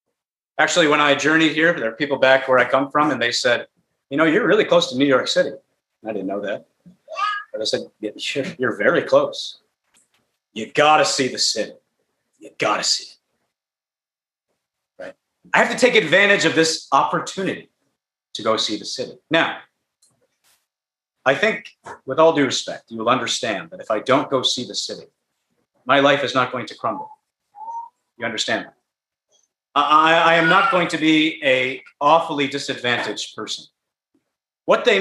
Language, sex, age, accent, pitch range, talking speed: English, male, 40-59, American, 140-215 Hz, 175 wpm